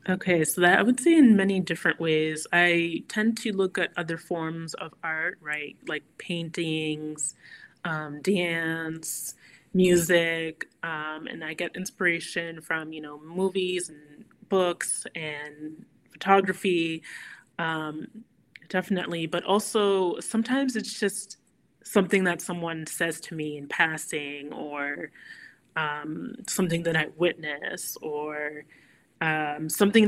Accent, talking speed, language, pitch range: American, 125 wpm, English, 155-185 Hz